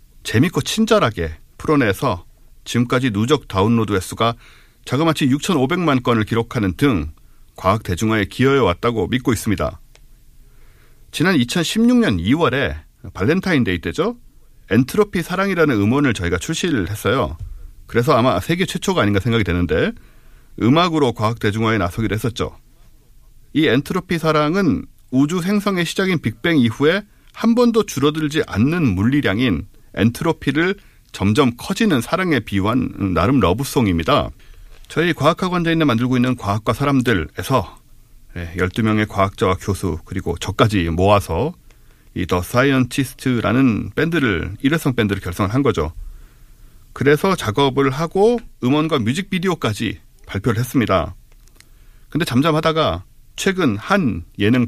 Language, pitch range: Korean, 100-155 Hz